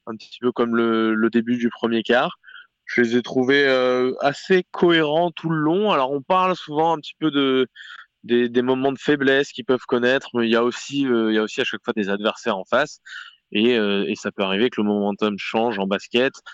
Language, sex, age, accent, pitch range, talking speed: French, male, 20-39, French, 115-135 Hz, 235 wpm